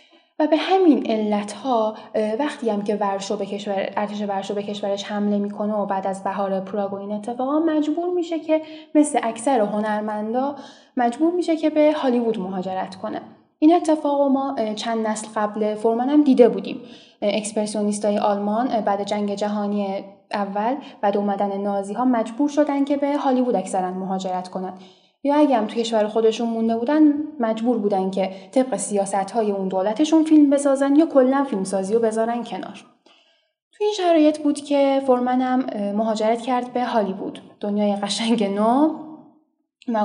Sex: female